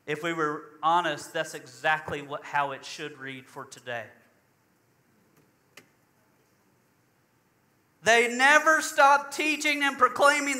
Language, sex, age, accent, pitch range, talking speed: English, male, 40-59, American, 245-320 Hz, 110 wpm